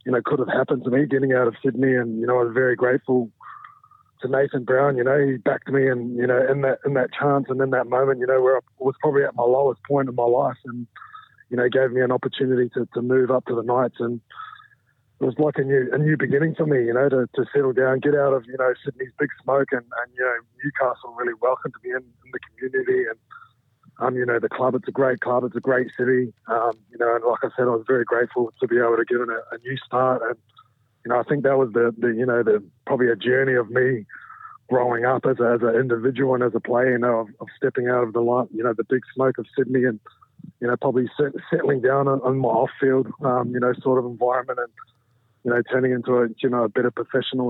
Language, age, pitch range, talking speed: English, 20-39, 120-135 Hz, 255 wpm